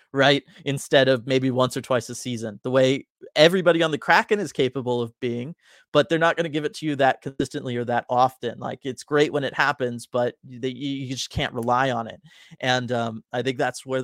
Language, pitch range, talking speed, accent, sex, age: English, 125-150 Hz, 220 wpm, American, male, 30-49